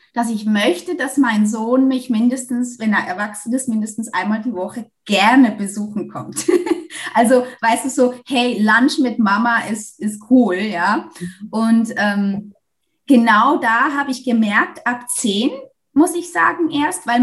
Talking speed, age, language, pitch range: 155 wpm, 20-39, German, 215-270 Hz